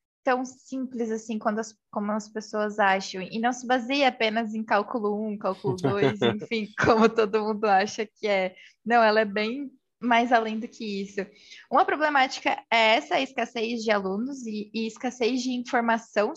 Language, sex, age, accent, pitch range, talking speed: Portuguese, female, 20-39, Brazilian, 215-260 Hz, 170 wpm